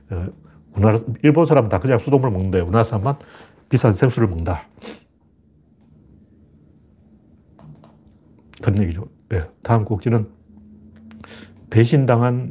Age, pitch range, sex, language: 40-59, 95-135 Hz, male, Korean